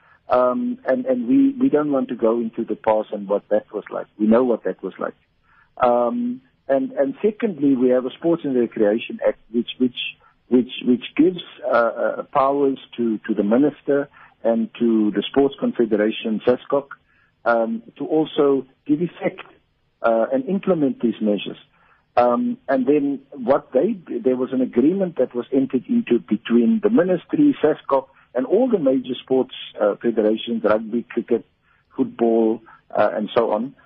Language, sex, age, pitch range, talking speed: English, male, 50-69, 115-140 Hz, 165 wpm